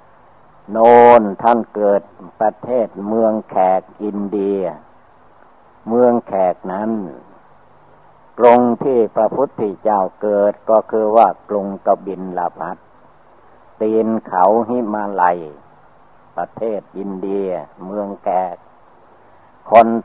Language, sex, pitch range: Thai, male, 95-110 Hz